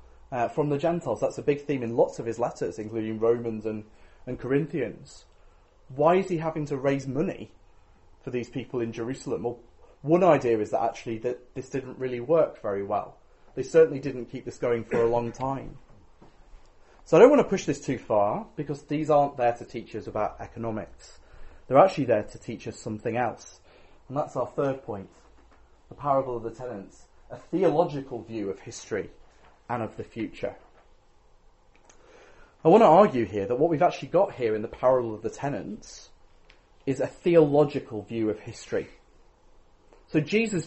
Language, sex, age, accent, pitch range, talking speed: English, male, 30-49, British, 110-155 Hz, 180 wpm